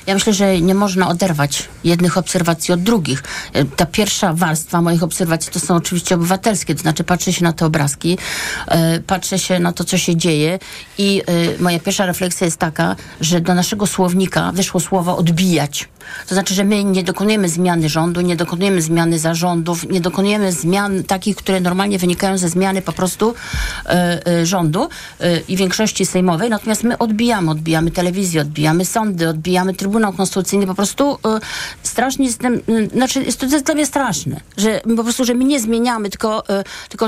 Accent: native